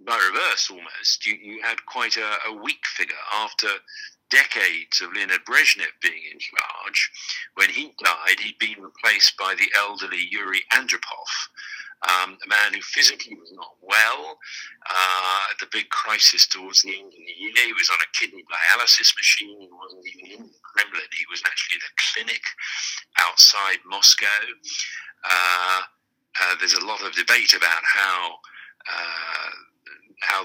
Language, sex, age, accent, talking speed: English, male, 50-69, British, 155 wpm